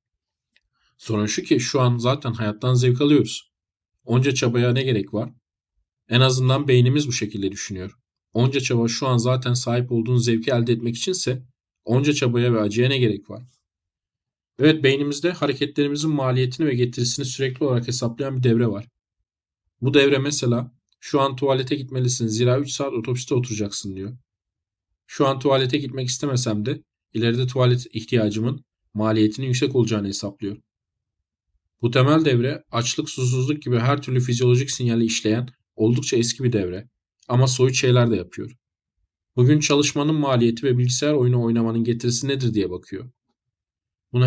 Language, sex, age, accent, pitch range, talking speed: Turkish, male, 40-59, native, 110-135 Hz, 145 wpm